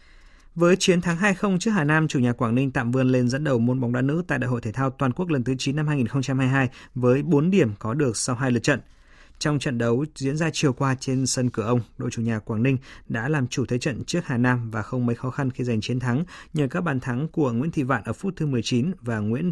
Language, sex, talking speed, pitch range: Vietnamese, male, 270 wpm, 120-150 Hz